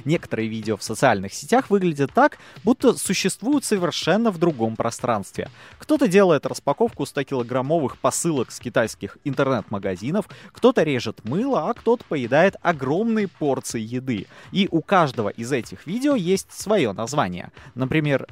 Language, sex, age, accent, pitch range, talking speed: Russian, male, 20-39, native, 120-195 Hz, 130 wpm